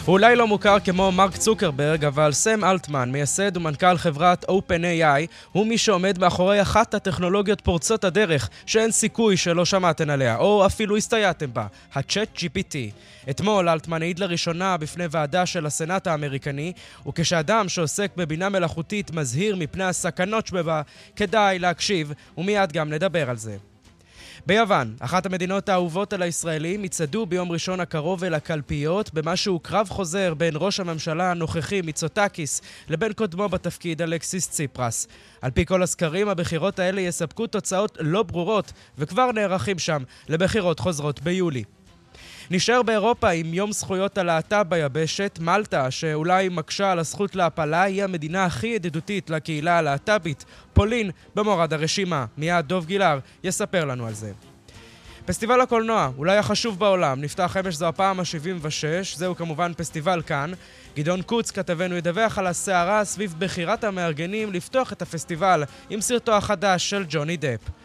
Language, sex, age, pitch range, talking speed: Hebrew, male, 20-39, 160-200 Hz, 140 wpm